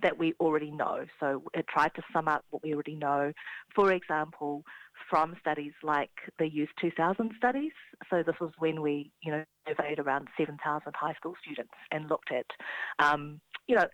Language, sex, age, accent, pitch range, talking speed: English, female, 30-49, Australian, 150-175 Hz, 180 wpm